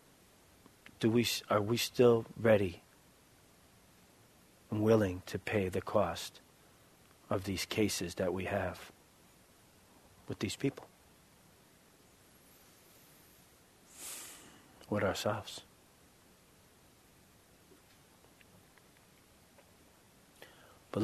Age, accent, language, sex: 40-59, American, English, male